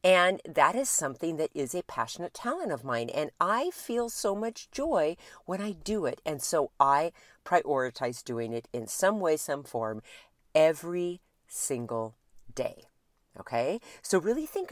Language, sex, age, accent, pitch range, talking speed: English, female, 50-69, American, 135-210 Hz, 160 wpm